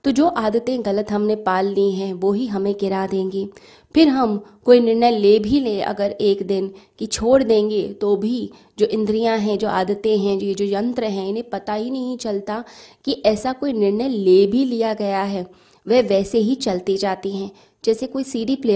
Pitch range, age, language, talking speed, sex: 195-225 Hz, 20-39, Hindi, 200 wpm, female